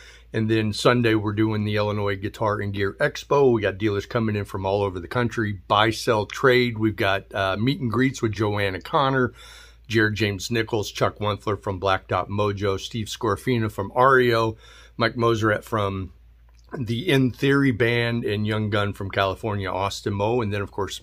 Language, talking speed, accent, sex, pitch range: English, 185 wpm, American, male, 100-120 Hz